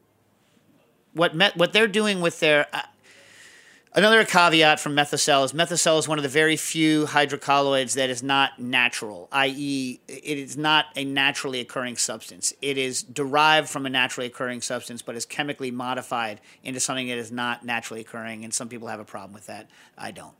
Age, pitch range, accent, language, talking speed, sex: 40-59, 135-175 Hz, American, English, 185 wpm, male